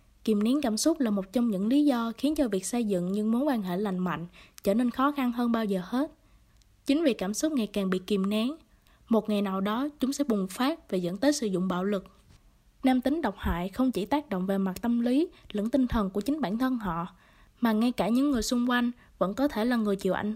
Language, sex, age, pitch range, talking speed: Vietnamese, female, 20-39, 200-265 Hz, 255 wpm